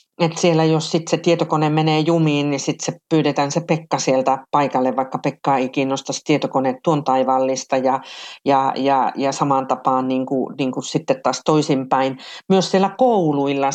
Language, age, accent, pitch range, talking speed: Finnish, 40-59, native, 135-160 Hz, 165 wpm